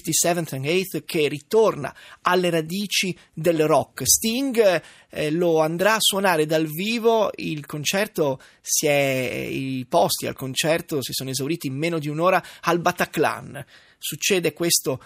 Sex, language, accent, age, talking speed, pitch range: male, Italian, native, 30-49, 145 wpm, 145-180 Hz